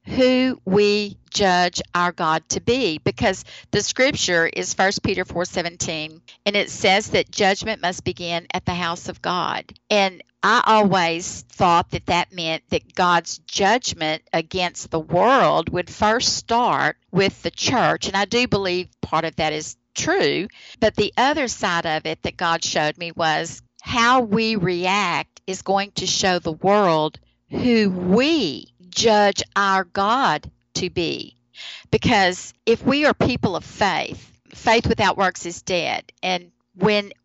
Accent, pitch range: American, 170-210 Hz